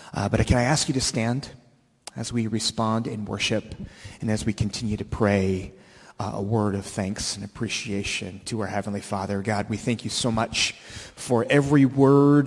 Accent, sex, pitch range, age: American, male, 105-125 Hz, 30-49